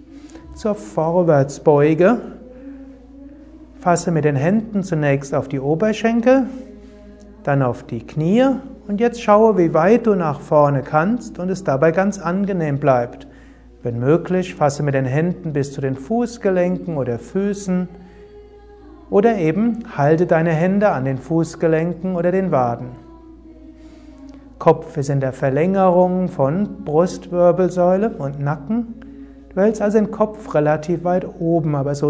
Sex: male